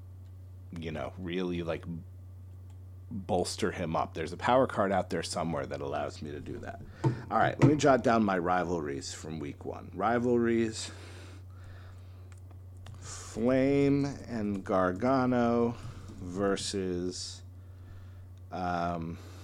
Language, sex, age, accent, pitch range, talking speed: English, male, 50-69, American, 90-100 Hz, 110 wpm